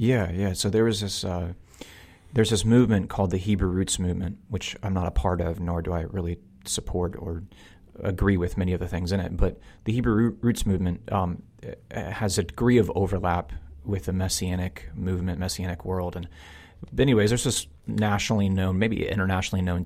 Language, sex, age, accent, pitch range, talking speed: English, male, 30-49, American, 90-105 Hz, 185 wpm